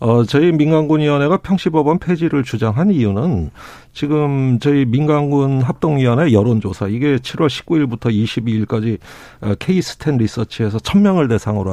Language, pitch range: Korean, 110-160 Hz